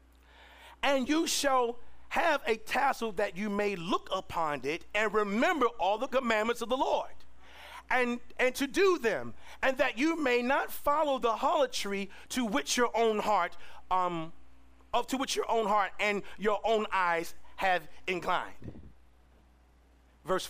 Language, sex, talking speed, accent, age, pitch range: English, male, 155 wpm, American, 40-59, 170-260 Hz